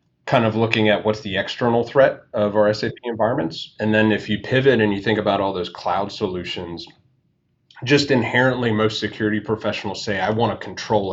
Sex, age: male, 30-49